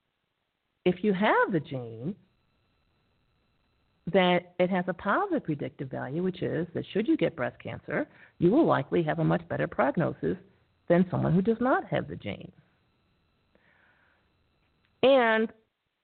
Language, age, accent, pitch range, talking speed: English, 50-69, American, 145-190 Hz, 140 wpm